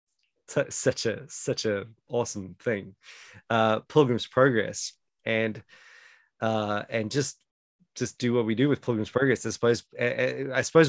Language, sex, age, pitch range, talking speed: English, male, 20-39, 110-130 Hz, 140 wpm